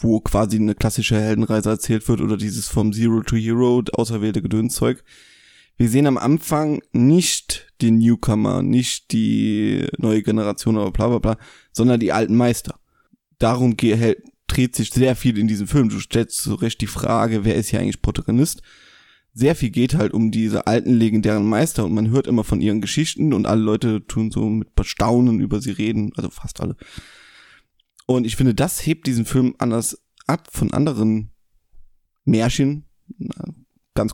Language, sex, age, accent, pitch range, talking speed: German, male, 20-39, German, 110-130 Hz, 165 wpm